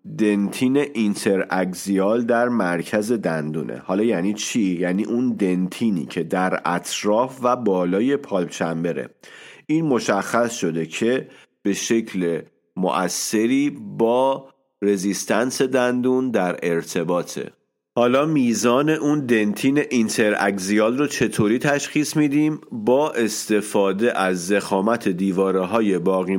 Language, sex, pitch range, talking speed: Persian, male, 95-125 Hz, 105 wpm